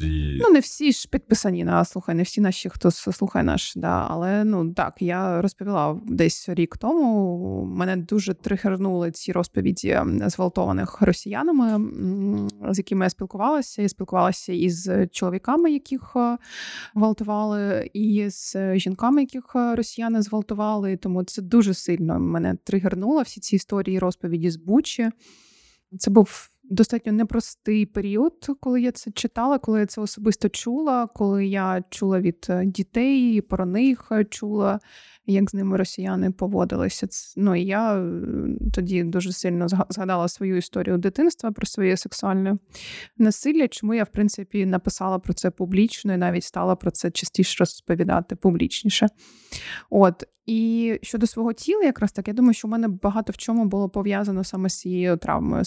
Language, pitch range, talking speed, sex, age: English, 185-225 Hz, 145 wpm, female, 20-39